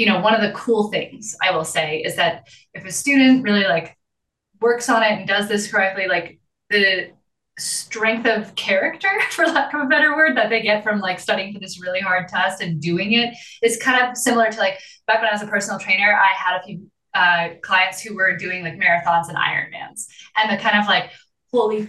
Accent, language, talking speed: American, English, 220 wpm